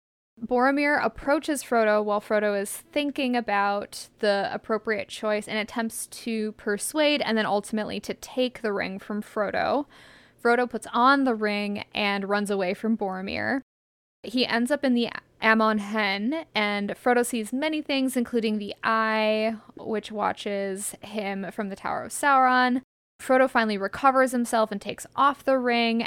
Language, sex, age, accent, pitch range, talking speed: English, female, 10-29, American, 210-250 Hz, 150 wpm